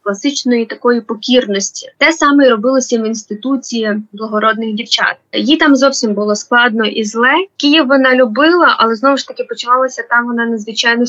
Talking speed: 150 wpm